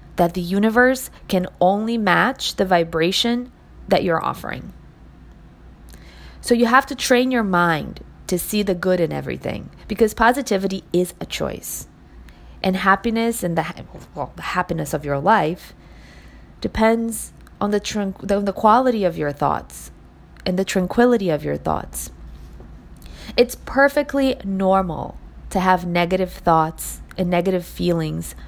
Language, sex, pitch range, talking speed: English, female, 155-195 Hz, 135 wpm